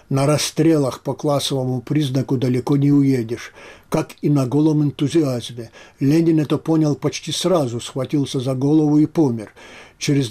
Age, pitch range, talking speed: 60-79, 135-160 Hz, 140 wpm